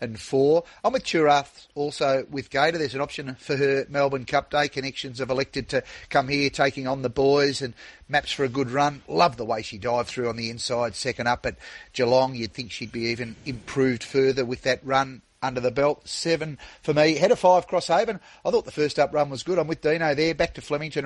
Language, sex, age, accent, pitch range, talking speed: English, male, 30-49, Australian, 125-155 Hz, 230 wpm